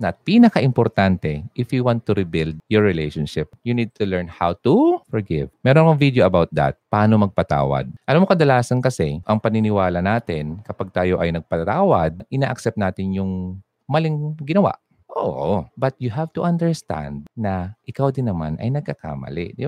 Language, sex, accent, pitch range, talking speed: Filipino, male, native, 90-140 Hz, 155 wpm